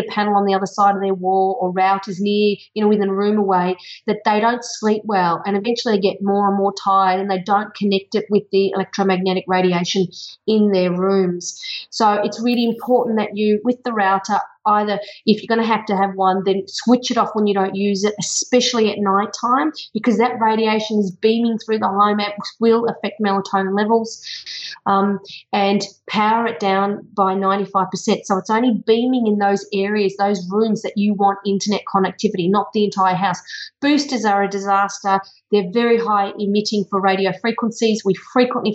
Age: 30-49